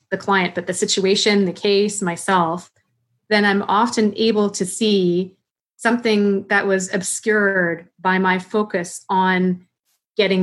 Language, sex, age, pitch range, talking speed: English, female, 30-49, 180-200 Hz, 130 wpm